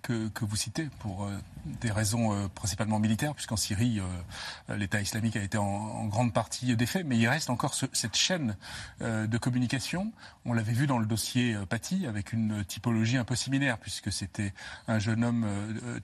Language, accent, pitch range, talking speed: French, French, 110-130 Hz, 200 wpm